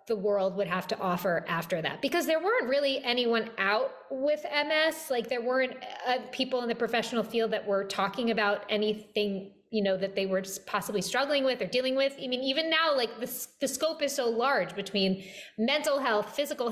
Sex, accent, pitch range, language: female, American, 195-255 Hz, English